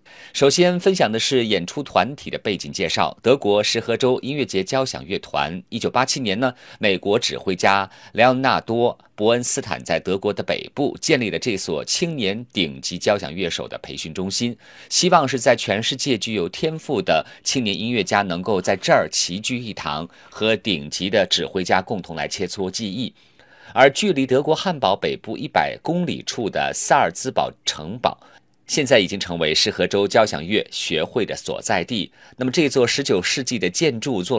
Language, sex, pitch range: Chinese, male, 95-135 Hz